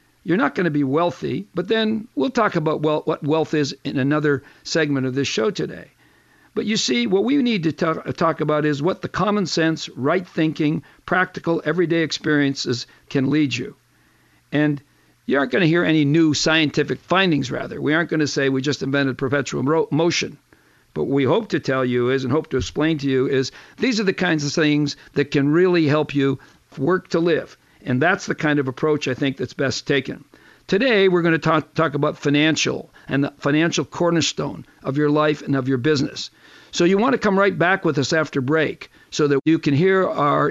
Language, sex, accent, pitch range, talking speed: English, male, American, 140-170 Hz, 205 wpm